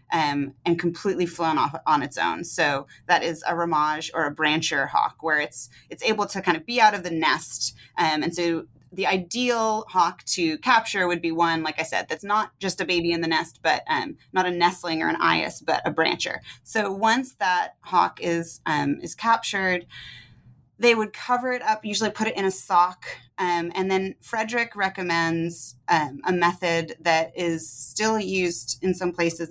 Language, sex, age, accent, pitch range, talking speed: English, female, 30-49, American, 160-190 Hz, 195 wpm